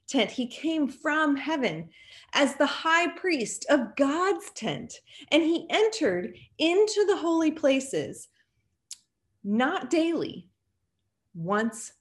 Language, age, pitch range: English, 30-49, 180-280 Hz